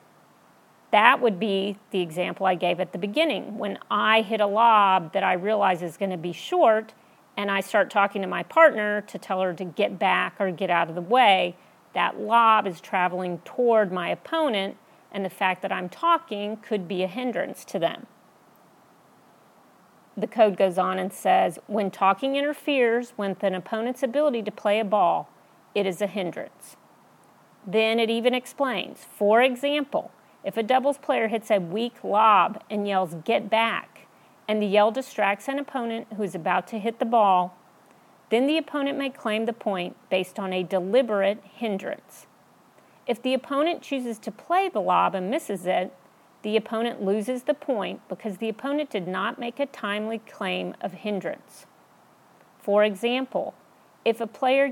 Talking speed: 170 wpm